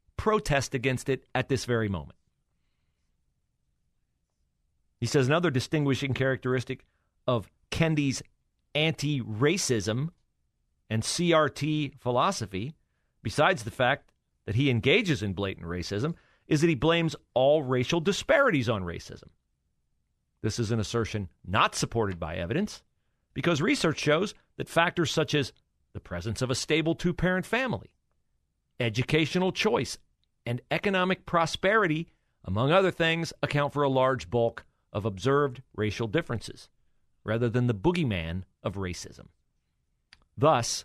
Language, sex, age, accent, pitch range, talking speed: English, male, 40-59, American, 105-155 Hz, 120 wpm